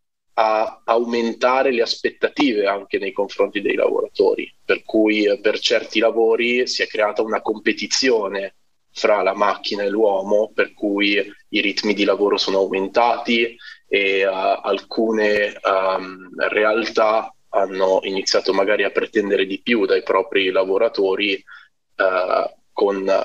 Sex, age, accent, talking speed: male, 20-39, native, 115 wpm